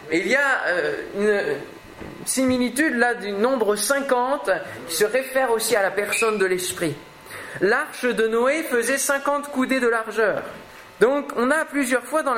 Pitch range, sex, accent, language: 205-265 Hz, male, French, French